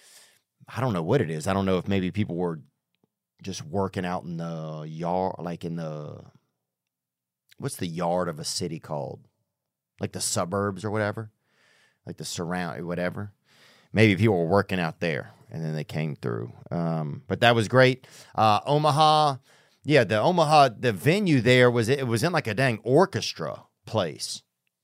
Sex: male